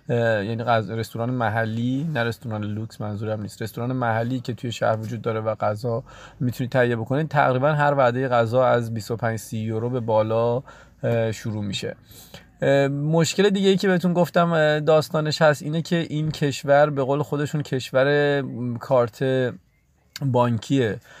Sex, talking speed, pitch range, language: male, 145 wpm, 115-140 Hz, Persian